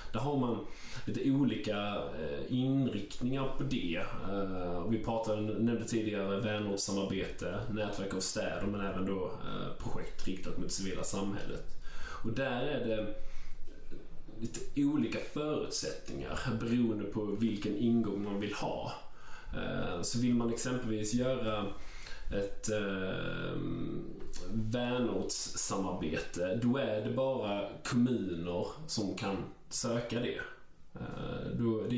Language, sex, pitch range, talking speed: English, male, 95-115 Hz, 105 wpm